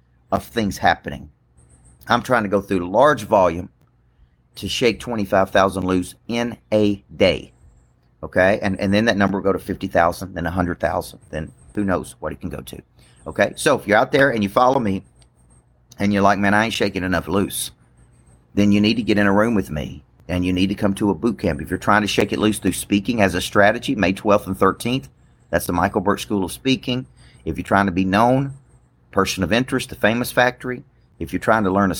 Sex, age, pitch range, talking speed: male, 40-59, 90-115 Hz, 225 wpm